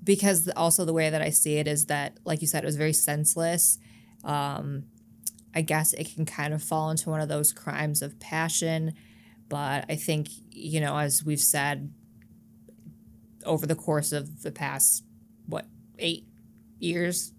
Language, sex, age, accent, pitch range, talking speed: English, female, 20-39, American, 115-160 Hz, 170 wpm